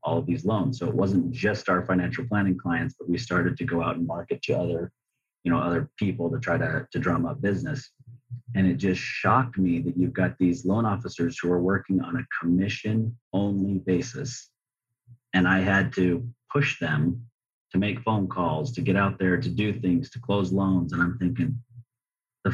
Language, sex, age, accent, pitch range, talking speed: English, male, 30-49, American, 90-120 Hz, 200 wpm